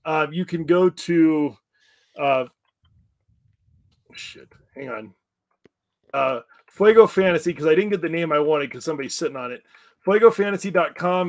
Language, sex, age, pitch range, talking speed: English, male, 30-49, 145-175 Hz, 140 wpm